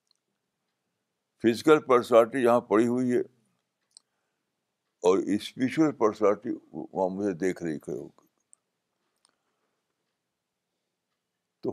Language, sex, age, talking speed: Urdu, male, 60-79, 75 wpm